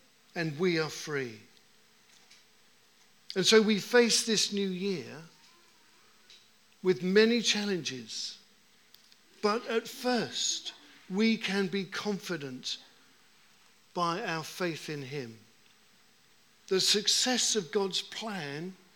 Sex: male